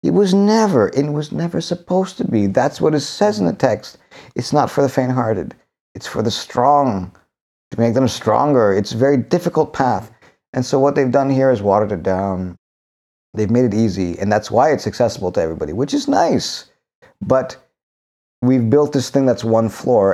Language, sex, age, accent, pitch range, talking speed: English, male, 50-69, American, 100-140 Hz, 195 wpm